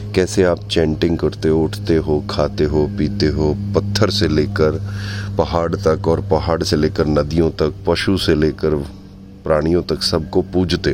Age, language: 30-49, Hindi